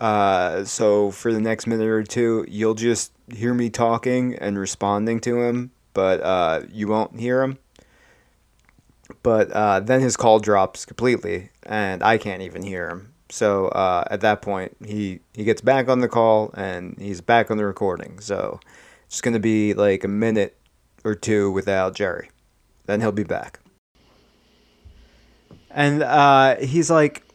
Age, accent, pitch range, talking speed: 30-49, American, 100-125 Hz, 160 wpm